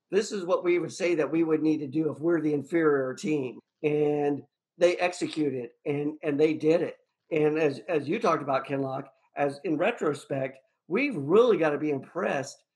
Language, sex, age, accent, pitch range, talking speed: English, male, 50-69, American, 145-175 Hz, 195 wpm